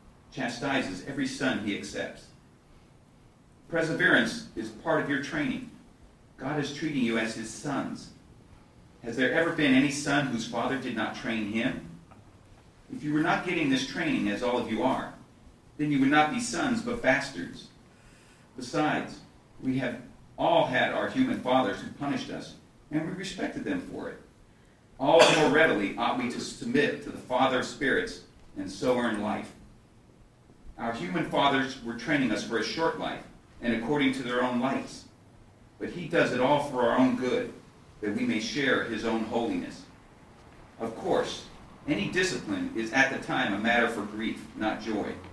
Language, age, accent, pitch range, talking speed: English, 40-59, American, 115-150 Hz, 170 wpm